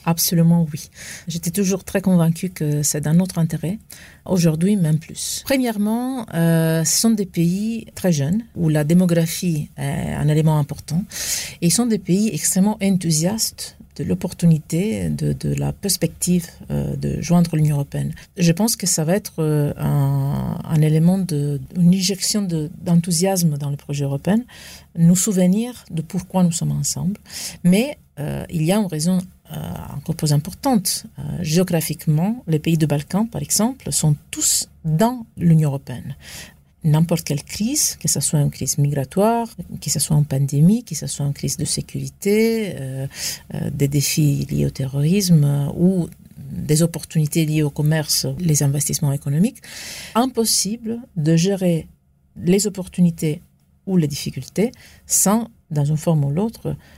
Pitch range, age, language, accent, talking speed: 150-190 Hz, 50-69, French, French, 155 wpm